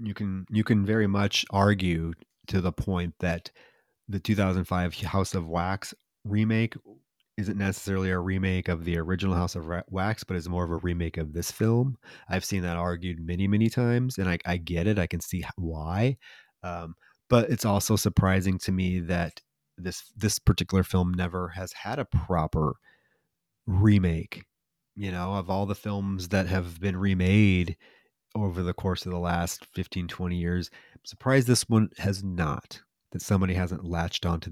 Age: 30-49